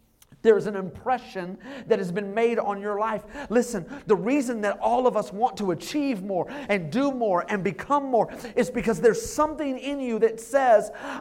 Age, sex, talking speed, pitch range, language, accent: 40-59, male, 185 wpm, 150-240 Hz, English, American